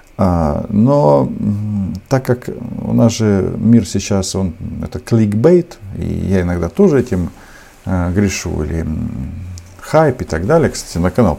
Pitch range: 90-120 Hz